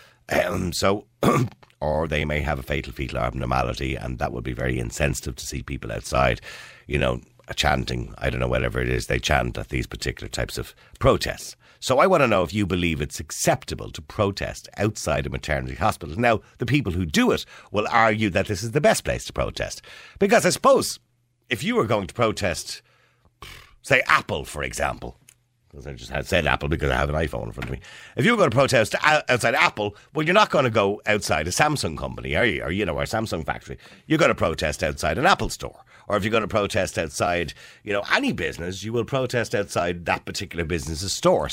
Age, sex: 50-69, male